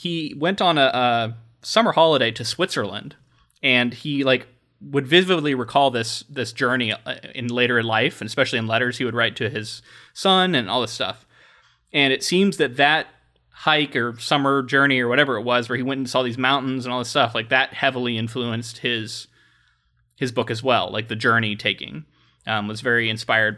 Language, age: English, 20-39